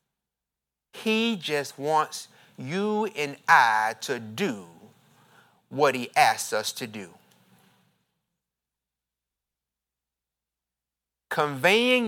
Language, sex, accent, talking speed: English, male, American, 75 wpm